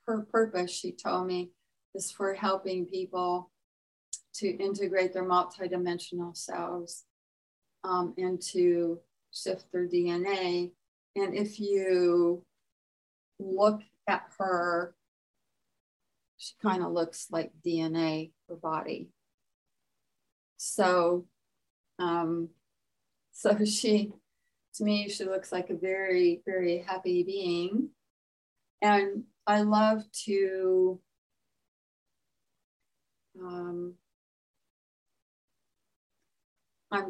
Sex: female